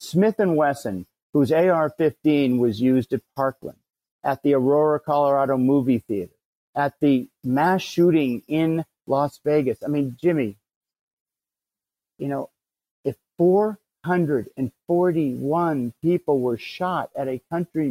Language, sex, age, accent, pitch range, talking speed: English, male, 50-69, American, 130-170 Hz, 115 wpm